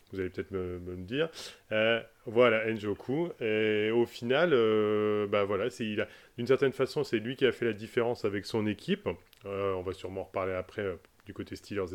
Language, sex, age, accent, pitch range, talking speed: French, male, 20-39, French, 95-115 Hz, 215 wpm